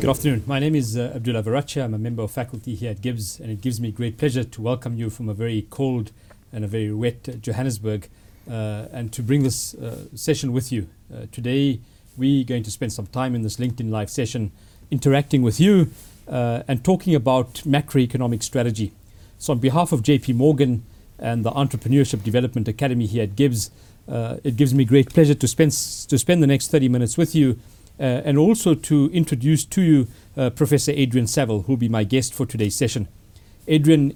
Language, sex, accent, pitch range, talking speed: English, male, South African, 110-140 Hz, 205 wpm